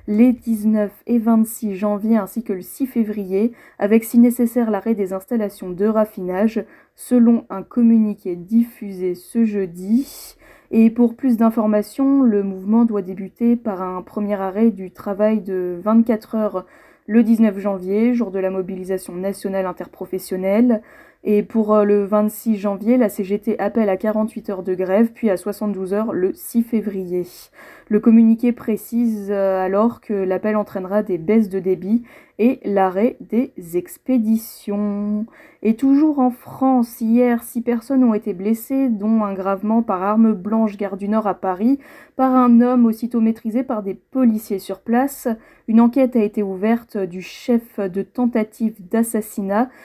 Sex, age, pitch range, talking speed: female, 20-39, 200-235 Hz, 150 wpm